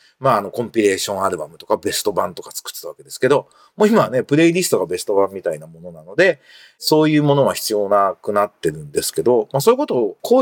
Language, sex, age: Japanese, male, 40-59